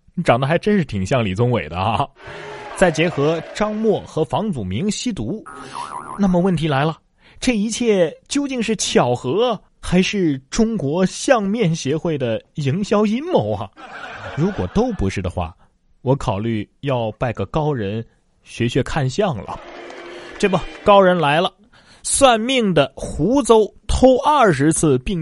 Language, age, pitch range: Chinese, 30-49, 115-185 Hz